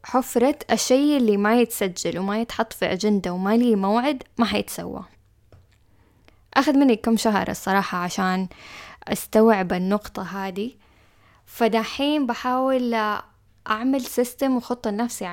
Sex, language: female, Arabic